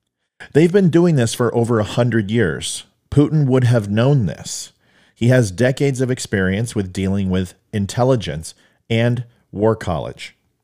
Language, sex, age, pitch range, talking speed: English, male, 40-59, 95-130 Hz, 145 wpm